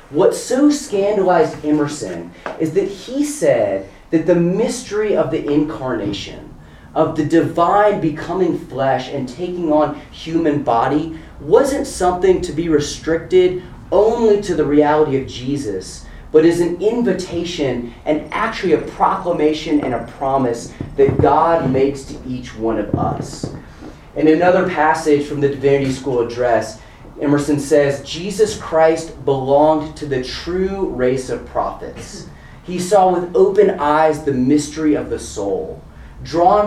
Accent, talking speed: American, 135 wpm